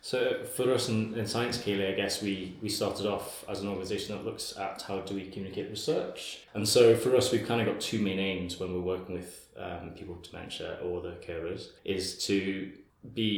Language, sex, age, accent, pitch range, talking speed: English, male, 20-39, British, 95-110 Hz, 220 wpm